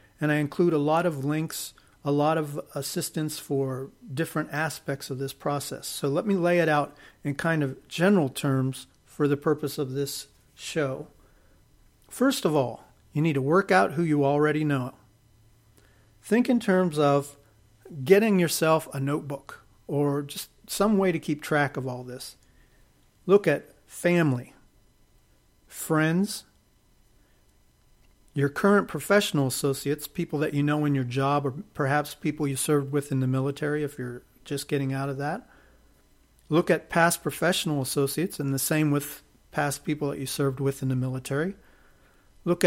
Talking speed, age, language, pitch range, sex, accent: 160 wpm, 40-59, English, 140-165 Hz, male, American